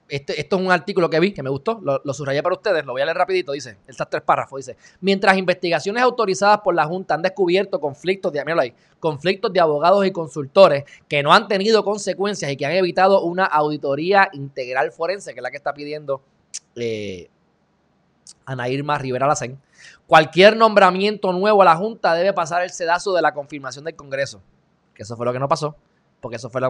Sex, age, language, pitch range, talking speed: male, 20-39, Spanish, 140-190 Hz, 205 wpm